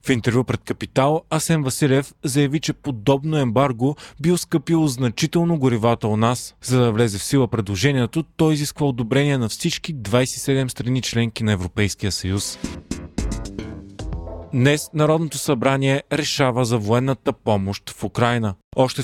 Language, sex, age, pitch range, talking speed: Bulgarian, male, 30-49, 120-145 Hz, 135 wpm